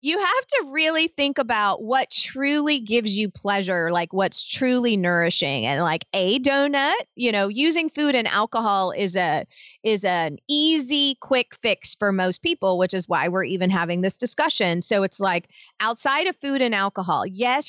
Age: 30-49